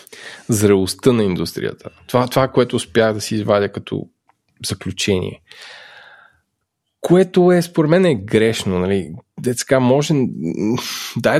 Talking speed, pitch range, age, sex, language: 115 wpm, 100-135 Hz, 20-39, male, Bulgarian